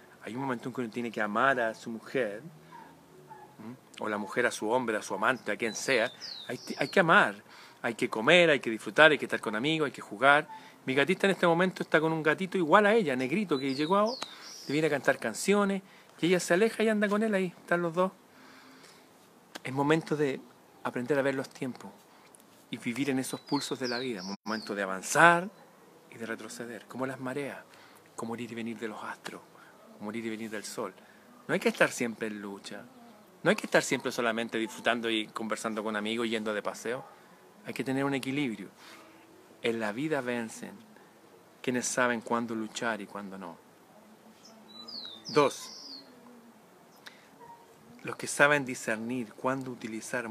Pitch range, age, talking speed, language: 115-160 Hz, 40-59, 190 wpm, Spanish